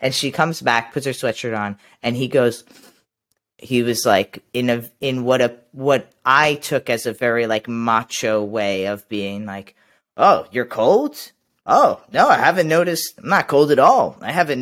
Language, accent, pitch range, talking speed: English, American, 120-160 Hz, 190 wpm